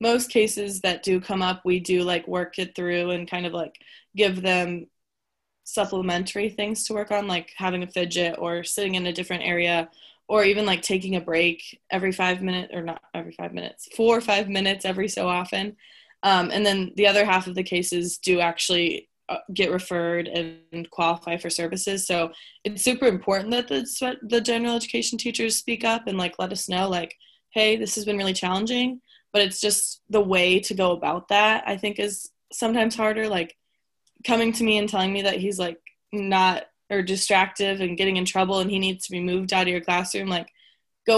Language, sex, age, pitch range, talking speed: English, female, 20-39, 180-210 Hz, 200 wpm